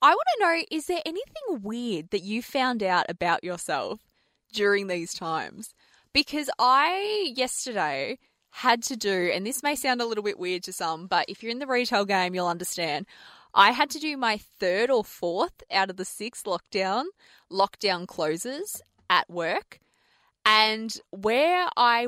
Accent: Australian